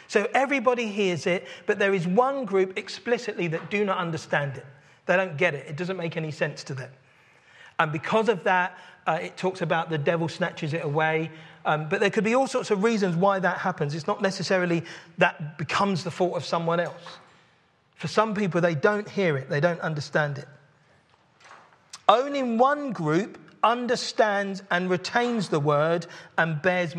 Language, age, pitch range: English, 40-59, 160-210 Hz